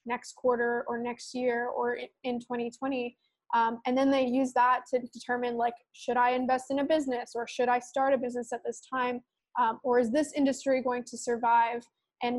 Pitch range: 240-260 Hz